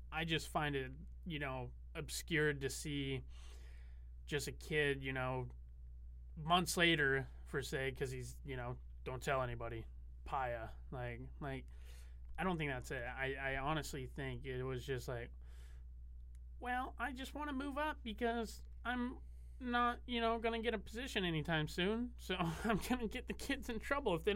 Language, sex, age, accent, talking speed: English, male, 20-39, American, 175 wpm